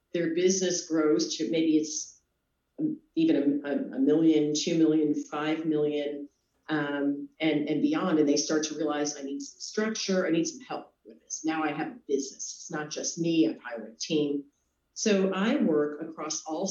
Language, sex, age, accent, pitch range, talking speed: English, female, 40-59, American, 145-180 Hz, 185 wpm